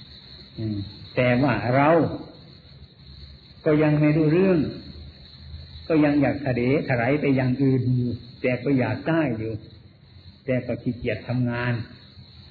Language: Thai